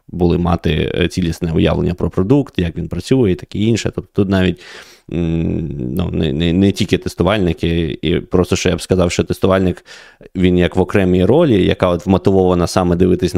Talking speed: 185 wpm